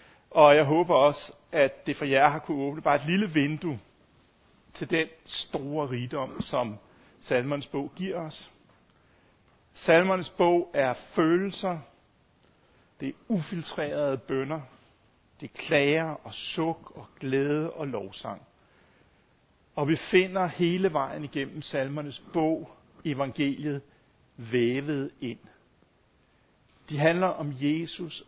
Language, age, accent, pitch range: Danish, 60-79, native, 135-175 Hz